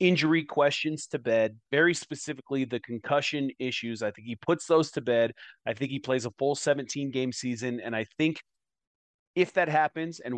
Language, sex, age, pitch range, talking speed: English, male, 30-49, 120-155 Hz, 185 wpm